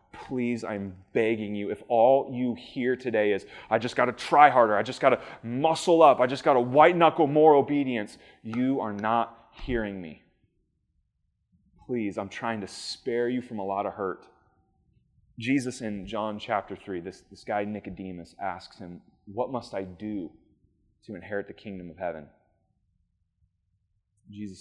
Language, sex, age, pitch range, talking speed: English, male, 30-49, 95-130 Hz, 165 wpm